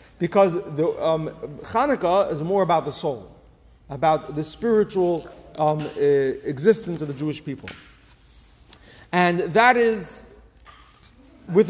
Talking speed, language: 115 wpm, English